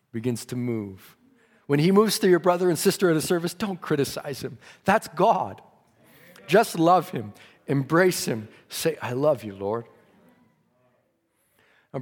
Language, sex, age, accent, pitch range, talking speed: English, male, 40-59, American, 110-150 Hz, 150 wpm